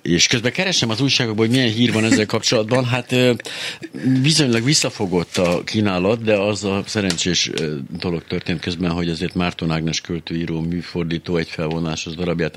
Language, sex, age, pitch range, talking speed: Hungarian, male, 60-79, 75-90 Hz, 155 wpm